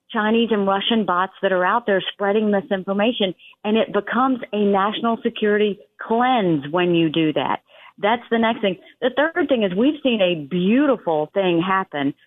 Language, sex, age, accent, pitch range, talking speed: English, female, 40-59, American, 185-230 Hz, 170 wpm